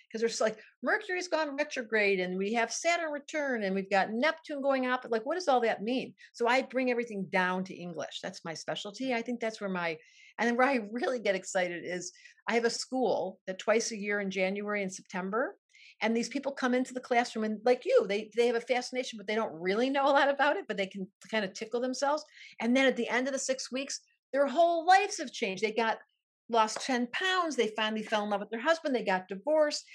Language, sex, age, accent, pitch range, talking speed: English, female, 50-69, American, 200-275 Hz, 240 wpm